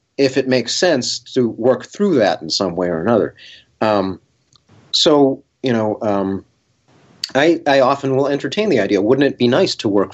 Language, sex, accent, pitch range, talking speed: English, male, American, 90-130 Hz, 185 wpm